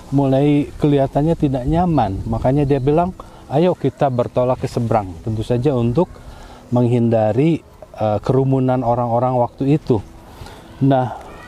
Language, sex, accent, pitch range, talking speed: Indonesian, male, native, 120-155 Hz, 115 wpm